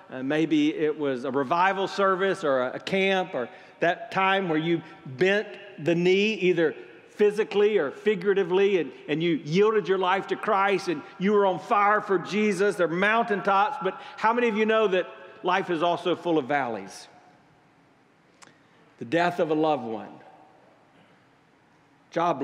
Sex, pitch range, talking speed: male, 160-210 Hz, 165 wpm